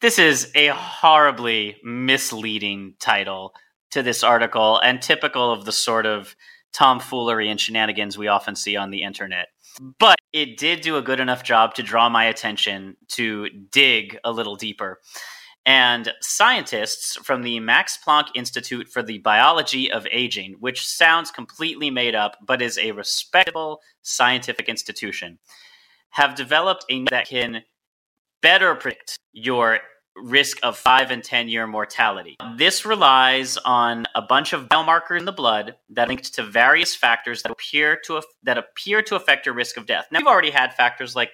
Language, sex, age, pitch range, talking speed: English, male, 30-49, 110-155 Hz, 165 wpm